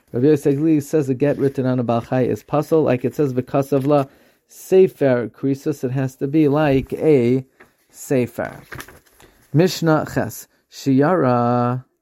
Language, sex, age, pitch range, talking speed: English, male, 30-49, 125-150 Hz, 140 wpm